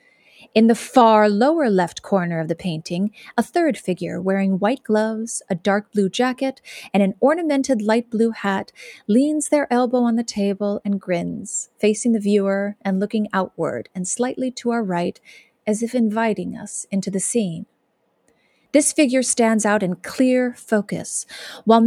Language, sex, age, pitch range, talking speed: English, female, 40-59, 195-245 Hz, 160 wpm